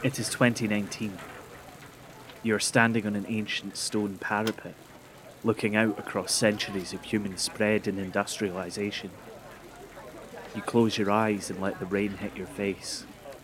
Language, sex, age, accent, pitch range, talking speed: English, male, 30-49, British, 100-115 Hz, 140 wpm